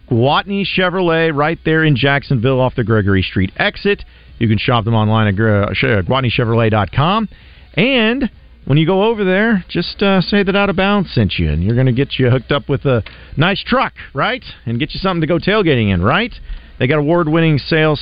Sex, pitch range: male, 95-140 Hz